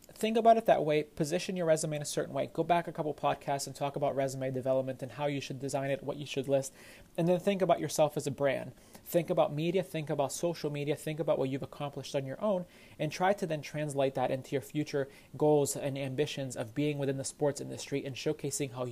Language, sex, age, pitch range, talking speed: English, male, 30-49, 135-155 Hz, 240 wpm